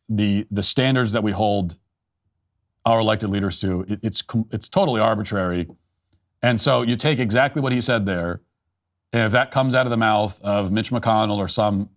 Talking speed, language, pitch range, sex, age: 185 wpm, English, 100-120 Hz, male, 40-59